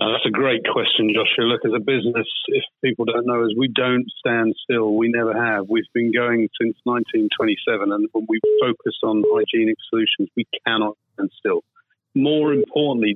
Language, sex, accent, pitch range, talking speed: English, male, British, 110-130 Hz, 185 wpm